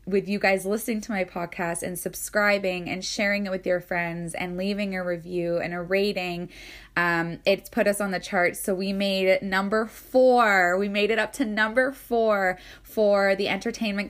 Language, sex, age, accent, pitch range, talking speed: English, female, 10-29, American, 175-210 Hz, 190 wpm